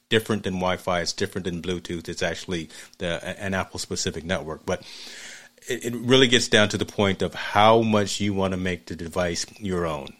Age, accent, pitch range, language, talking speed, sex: 30-49, American, 90-105 Hz, English, 195 wpm, male